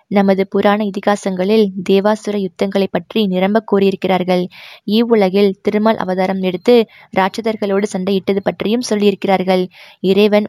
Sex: female